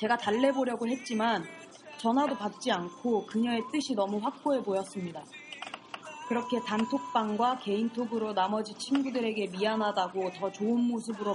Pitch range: 200-245 Hz